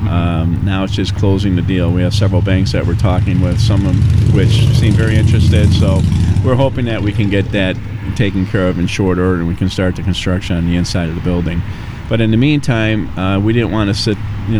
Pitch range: 90-105 Hz